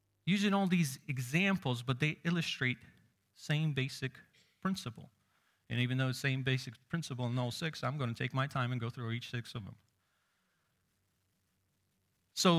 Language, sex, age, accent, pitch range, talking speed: English, male, 40-59, American, 120-160 Hz, 170 wpm